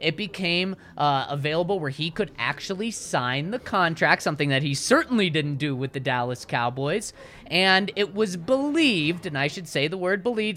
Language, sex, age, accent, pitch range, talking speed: English, male, 20-39, American, 140-200 Hz, 180 wpm